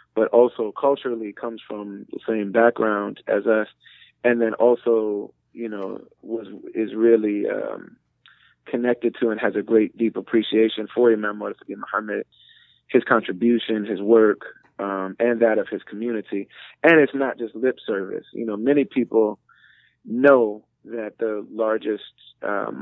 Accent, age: American, 30-49